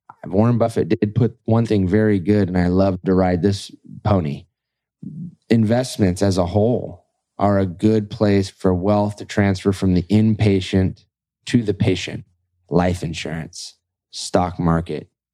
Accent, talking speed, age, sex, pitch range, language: American, 145 wpm, 20-39, male, 95-120 Hz, English